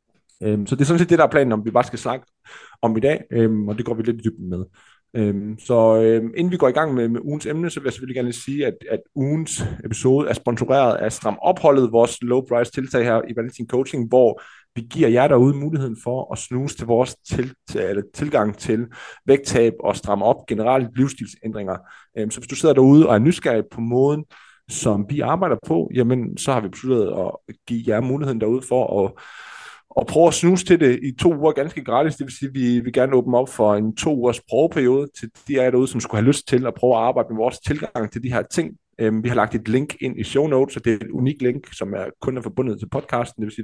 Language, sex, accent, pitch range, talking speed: Danish, male, native, 115-135 Hz, 235 wpm